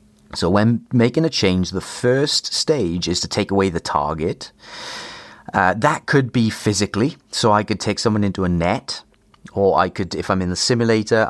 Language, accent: English, British